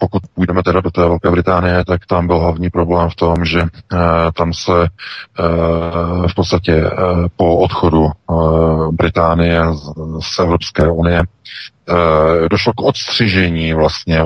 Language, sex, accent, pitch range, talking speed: Czech, male, native, 80-90 Hz, 145 wpm